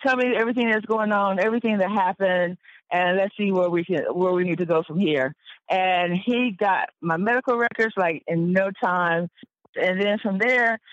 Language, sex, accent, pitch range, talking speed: English, female, American, 180-230 Hz, 200 wpm